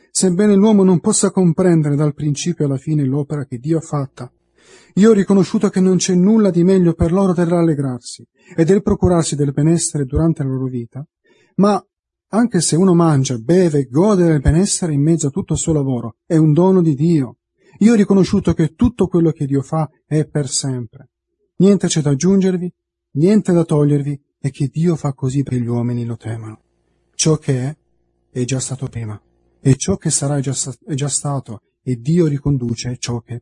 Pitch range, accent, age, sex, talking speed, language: 125-175 Hz, native, 30-49, male, 195 wpm, Italian